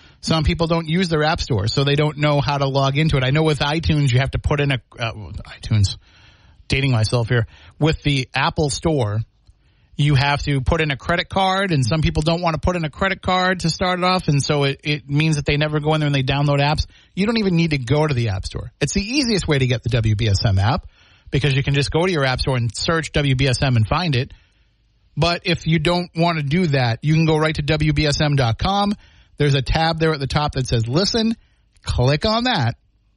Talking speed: 240 wpm